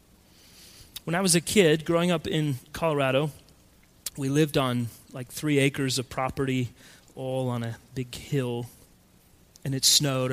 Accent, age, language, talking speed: American, 30-49, English, 145 wpm